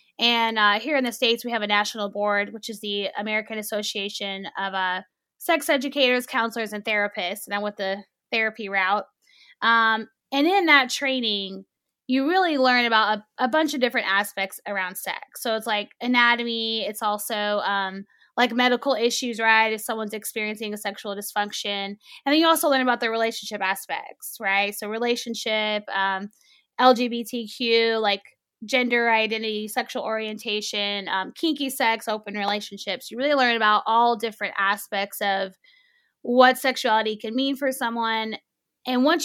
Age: 10-29